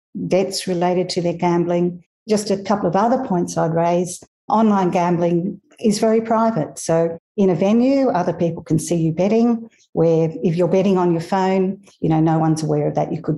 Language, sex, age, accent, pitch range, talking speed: English, female, 50-69, Australian, 155-185 Hz, 195 wpm